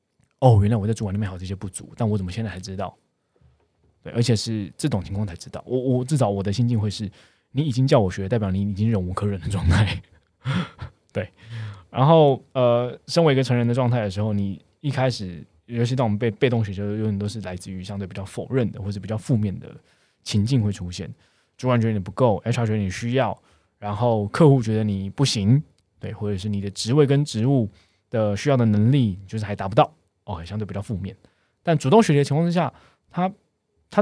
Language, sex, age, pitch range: Chinese, male, 20-39, 100-125 Hz